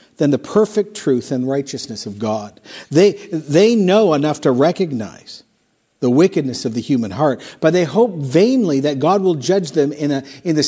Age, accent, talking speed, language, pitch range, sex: 50-69, American, 180 wpm, English, 130-165 Hz, male